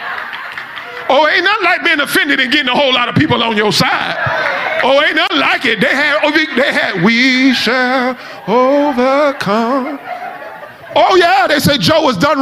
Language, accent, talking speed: English, American, 170 wpm